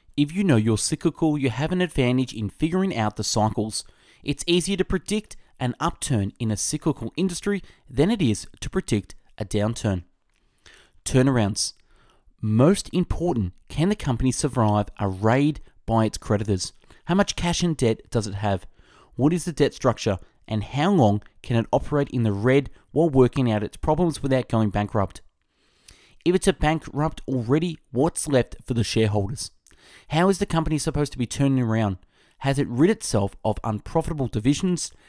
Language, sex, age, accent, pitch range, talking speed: English, male, 20-39, Australian, 105-155 Hz, 170 wpm